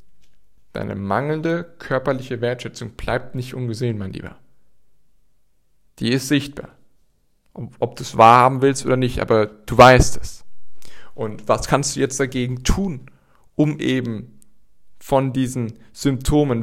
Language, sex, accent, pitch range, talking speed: German, male, German, 115-140 Hz, 125 wpm